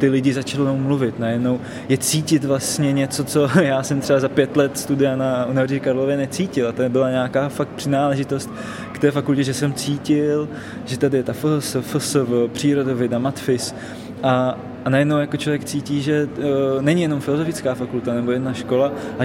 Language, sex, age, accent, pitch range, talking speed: Czech, male, 20-39, native, 125-145 Hz, 180 wpm